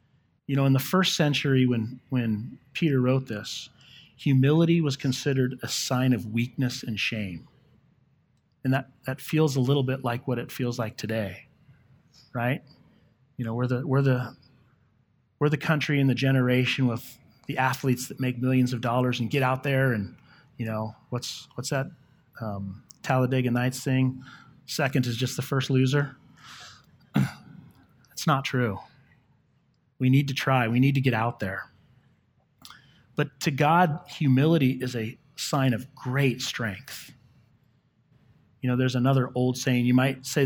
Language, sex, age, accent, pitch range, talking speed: English, male, 30-49, American, 120-140 Hz, 155 wpm